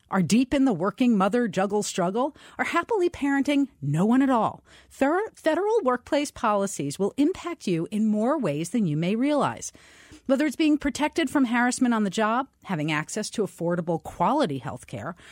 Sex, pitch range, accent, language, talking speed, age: female, 195-285 Hz, American, English, 170 wpm, 40-59